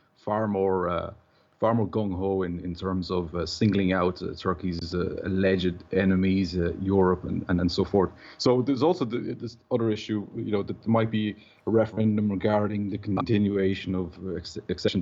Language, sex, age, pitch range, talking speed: English, male, 30-49, 95-105 Hz, 185 wpm